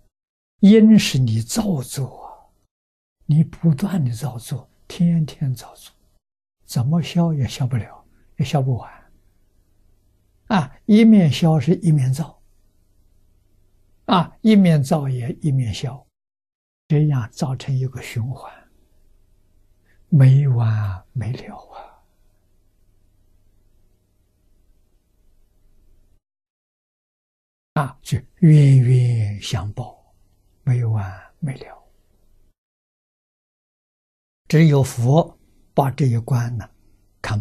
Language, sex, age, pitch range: Chinese, male, 60-79, 95-140 Hz